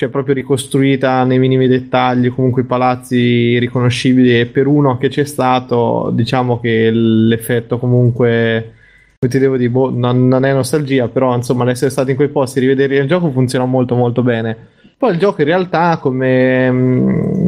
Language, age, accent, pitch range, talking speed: Italian, 20-39, native, 125-140 Hz, 170 wpm